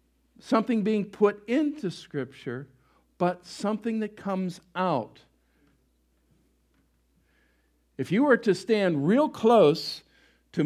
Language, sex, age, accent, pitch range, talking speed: English, male, 50-69, American, 135-225 Hz, 100 wpm